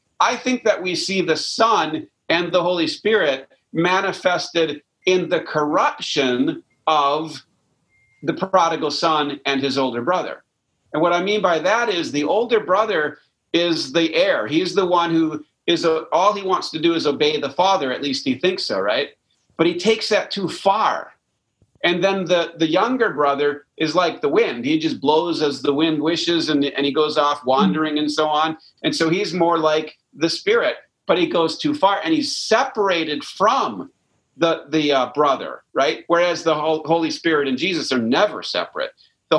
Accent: American